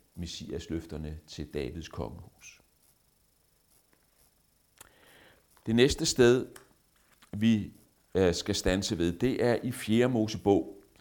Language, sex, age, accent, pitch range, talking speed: Danish, male, 60-79, native, 85-110 Hz, 95 wpm